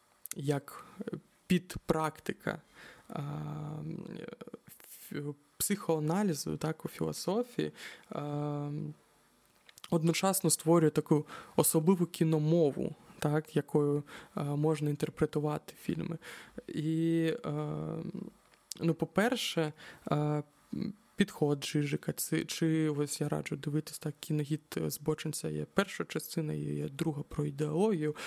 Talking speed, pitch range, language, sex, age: 85 wpm, 150-170 Hz, Ukrainian, male, 20-39